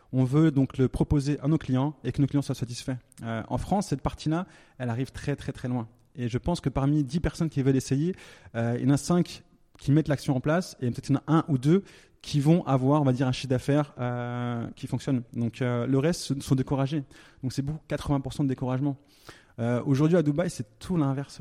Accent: French